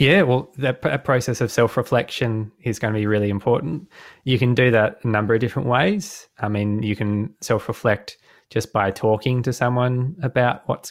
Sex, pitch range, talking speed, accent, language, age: male, 105-125 Hz, 180 wpm, Australian, English, 20-39